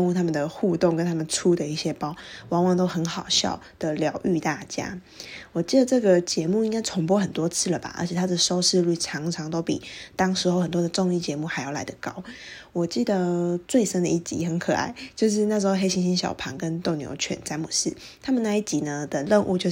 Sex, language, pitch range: female, Chinese, 165-190 Hz